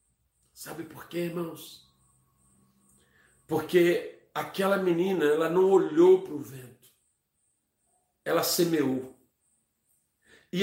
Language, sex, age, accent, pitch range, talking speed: Portuguese, male, 50-69, Brazilian, 185-265 Hz, 90 wpm